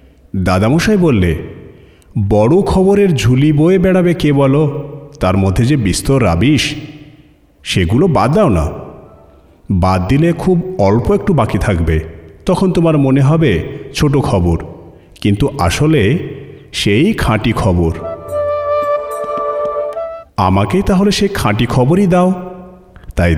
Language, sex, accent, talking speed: Bengali, male, native, 110 wpm